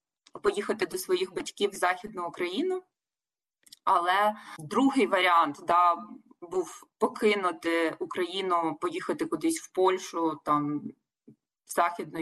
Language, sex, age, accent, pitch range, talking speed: Ukrainian, female, 20-39, native, 180-245 Hz, 100 wpm